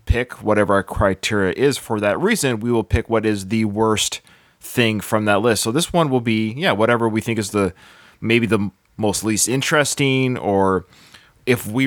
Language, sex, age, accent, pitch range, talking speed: English, male, 20-39, American, 110-150 Hz, 190 wpm